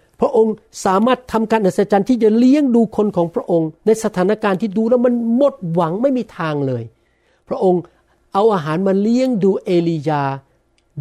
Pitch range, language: 150-210 Hz, Thai